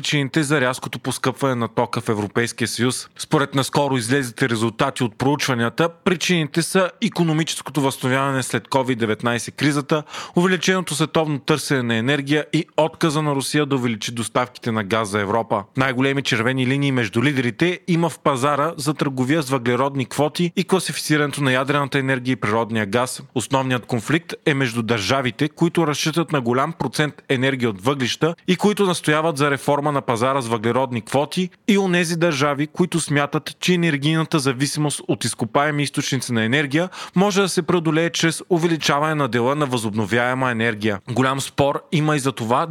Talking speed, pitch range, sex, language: 155 wpm, 125-160 Hz, male, Bulgarian